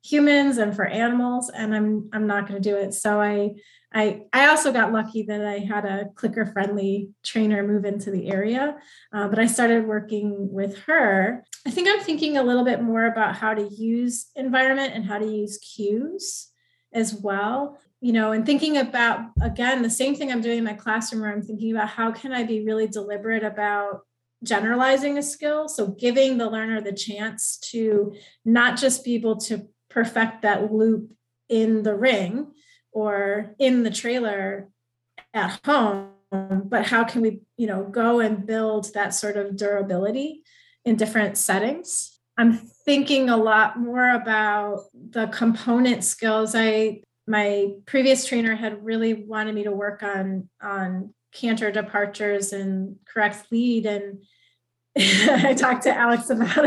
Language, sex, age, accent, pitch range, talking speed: English, female, 30-49, American, 205-245 Hz, 165 wpm